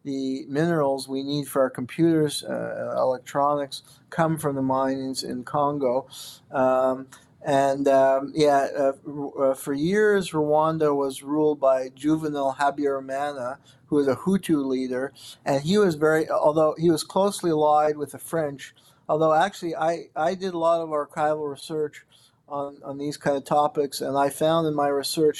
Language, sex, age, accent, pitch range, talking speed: English, male, 50-69, American, 135-155 Hz, 160 wpm